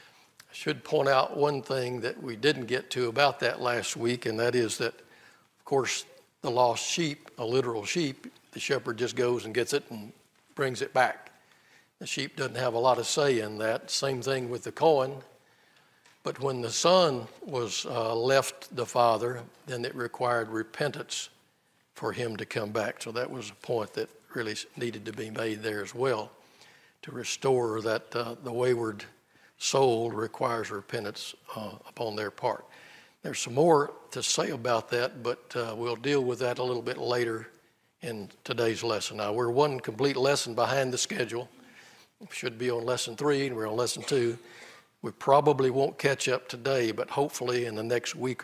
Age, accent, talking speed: 60-79, American, 185 wpm